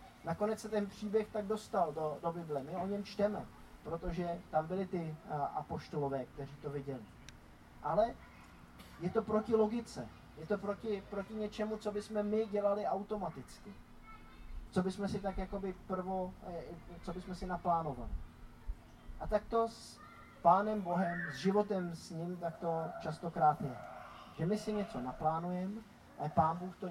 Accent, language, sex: native, Czech, male